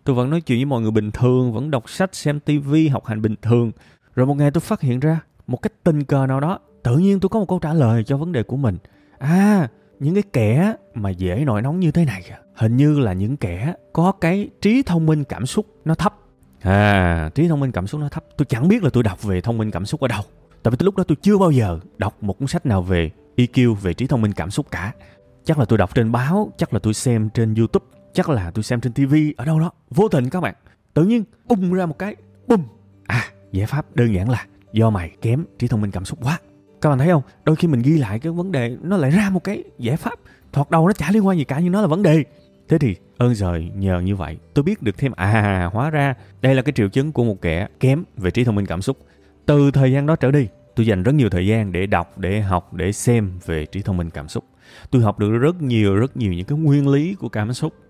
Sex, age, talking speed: male, 20-39, 270 wpm